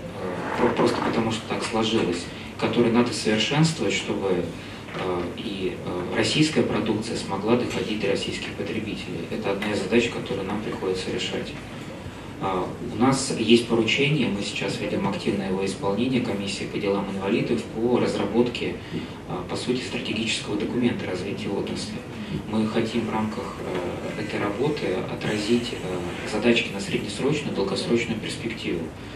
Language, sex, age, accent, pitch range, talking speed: Russian, male, 20-39, native, 95-115 Hz, 120 wpm